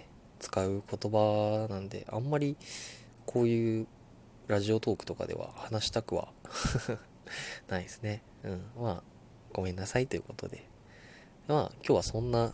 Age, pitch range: 20-39, 95-110 Hz